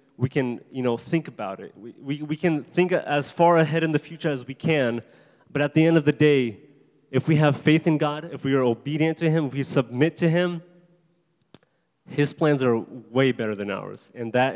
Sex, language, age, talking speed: male, English, 20-39, 225 wpm